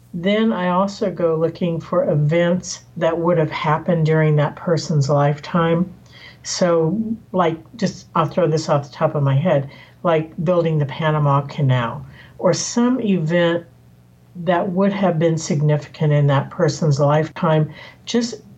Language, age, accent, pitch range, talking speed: English, 50-69, American, 150-180 Hz, 145 wpm